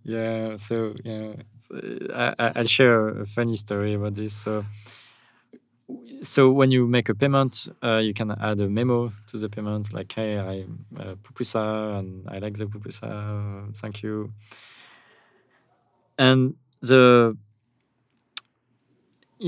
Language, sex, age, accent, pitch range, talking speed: English, male, 20-39, French, 100-120 Hz, 130 wpm